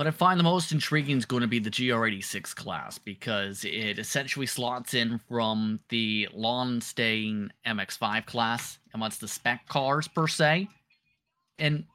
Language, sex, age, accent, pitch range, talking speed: English, male, 30-49, American, 120-165 Hz, 150 wpm